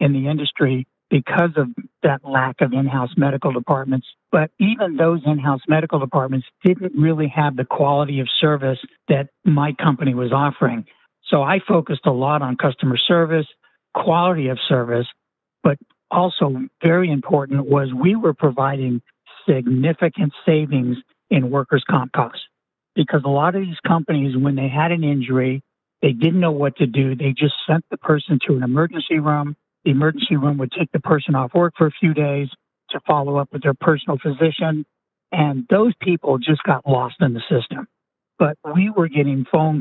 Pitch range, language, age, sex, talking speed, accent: 135-165 Hz, English, 60-79, male, 170 wpm, American